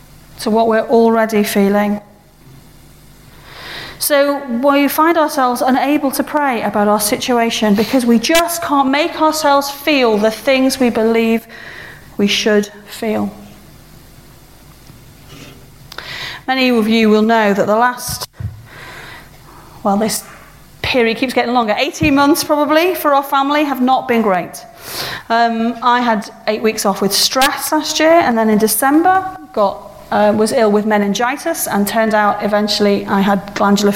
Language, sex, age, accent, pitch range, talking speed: English, female, 40-59, British, 205-265 Hz, 140 wpm